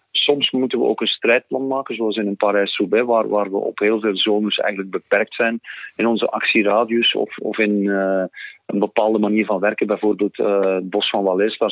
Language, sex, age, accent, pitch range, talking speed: Dutch, male, 40-59, Dutch, 100-130 Hz, 205 wpm